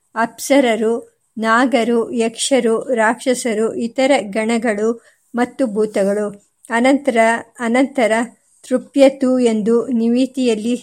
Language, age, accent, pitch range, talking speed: Kannada, 50-69, native, 220-250 Hz, 70 wpm